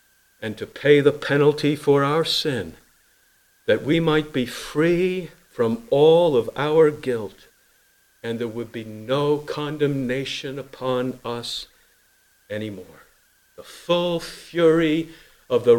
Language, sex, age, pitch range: English, male, 50-69, 120-165 Hz